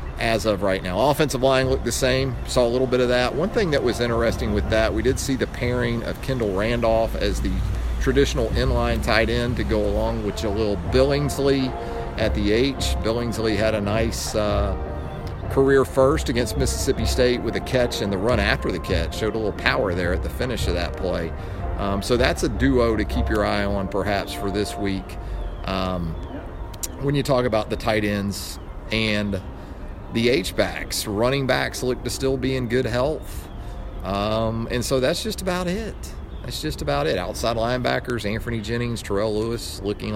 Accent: American